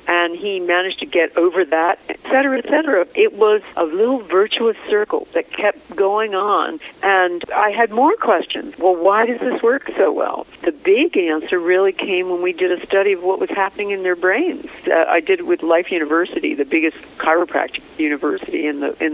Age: 50-69